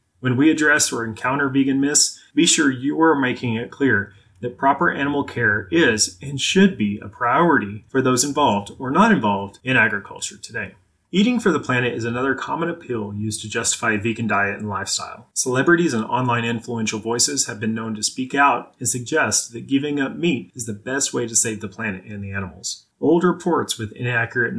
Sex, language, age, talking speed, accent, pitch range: male, English, 30-49, 200 wpm, American, 110-140 Hz